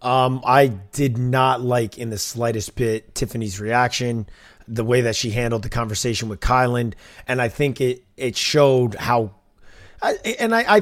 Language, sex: English, male